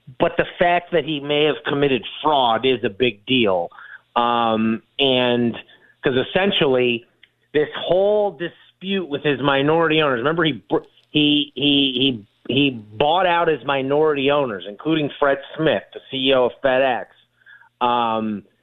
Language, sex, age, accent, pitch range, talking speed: English, male, 30-49, American, 125-160 Hz, 135 wpm